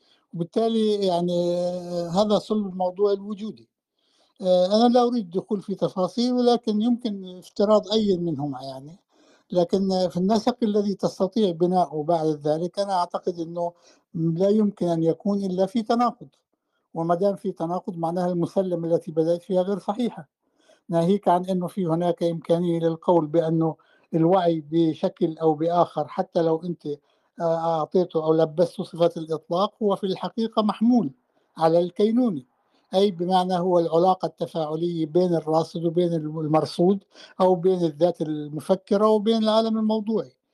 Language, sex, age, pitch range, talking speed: Arabic, male, 60-79, 170-205 Hz, 130 wpm